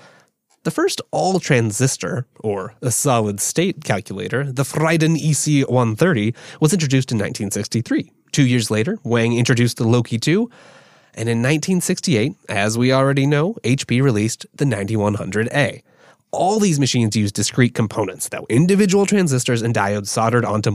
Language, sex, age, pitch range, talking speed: English, male, 20-39, 105-145 Hz, 135 wpm